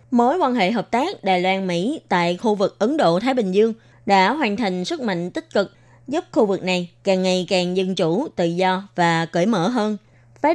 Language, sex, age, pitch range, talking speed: Vietnamese, female, 20-39, 180-240 Hz, 210 wpm